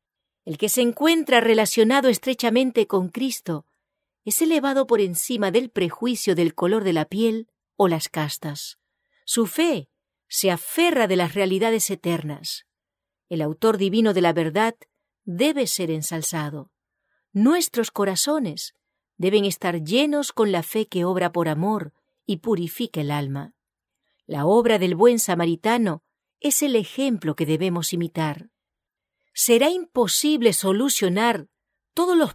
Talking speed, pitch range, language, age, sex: 130 wpm, 175-250 Hz, English, 40-59, female